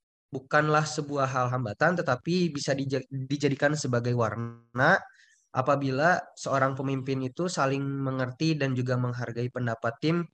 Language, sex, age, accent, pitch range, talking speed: Indonesian, male, 20-39, native, 125-155 Hz, 115 wpm